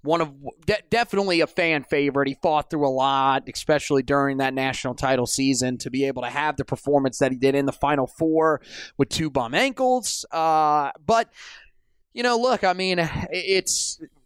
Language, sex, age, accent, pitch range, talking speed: English, male, 20-39, American, 145-185 Hz, 185 wpm